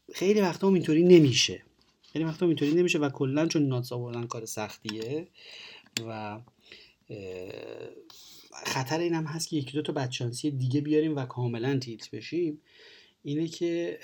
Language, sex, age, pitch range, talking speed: Persian, male, 30-49, 120-160 Hz, 125 wpm